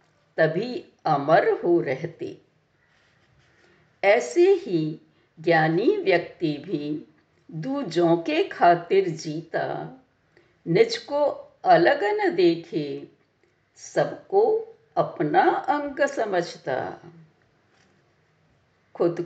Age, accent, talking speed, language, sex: 60-79, native, 70 wpm, Hindi, female